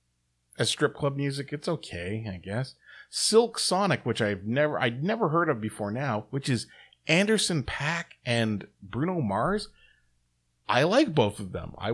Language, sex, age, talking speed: English, male, 30-49, 160 wpm